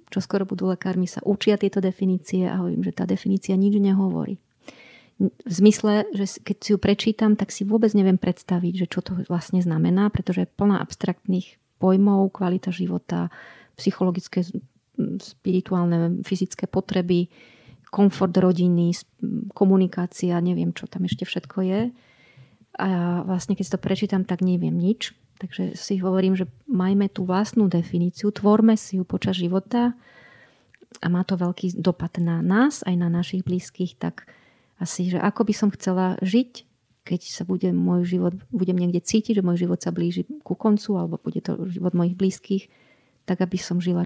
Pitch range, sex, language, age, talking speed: 180-200 Hz, female, Slovak, 30-49, 160 wpm